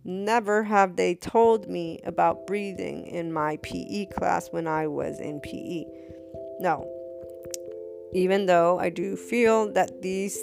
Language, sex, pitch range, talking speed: English, female, 160-190 Hz, 140 wpm